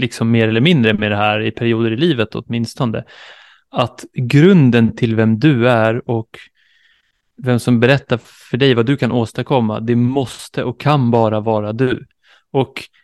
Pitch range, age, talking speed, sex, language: 115-145 Hz, 30-49, 165 wpm, male, Swedish